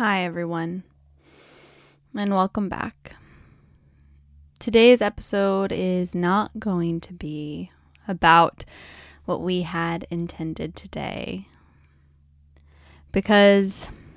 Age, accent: 10-29, American